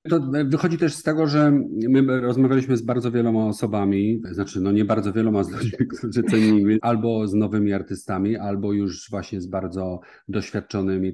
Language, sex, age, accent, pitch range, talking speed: Polish, male, 40-59, native, 95-115 Hz, 165 wpm